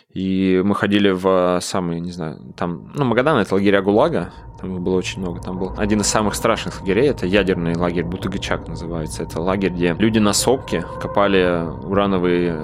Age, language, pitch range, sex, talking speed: 20-39, Russian, 90-110 Hz, male, 175 wpm